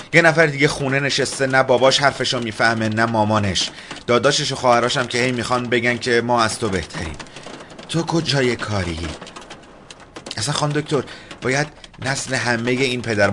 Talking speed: 160 wpm